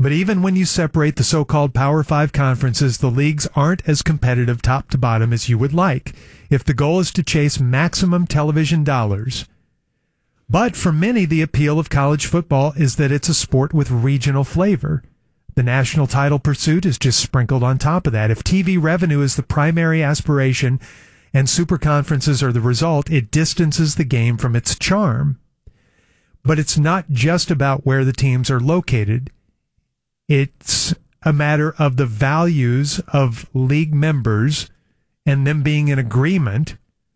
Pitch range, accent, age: 130-155 Hz, American, 40-59